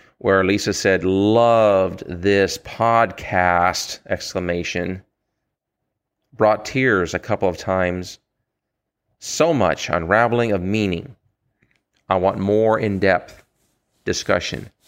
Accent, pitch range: American, 95-110 Hz